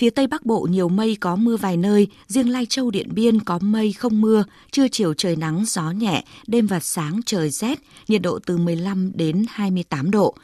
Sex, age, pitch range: female, 20-39, 175-225 Hz